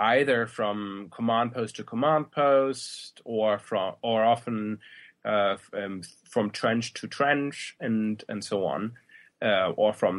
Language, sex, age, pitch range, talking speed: English, male, 20-39, 110-135 Hz, 145 wpm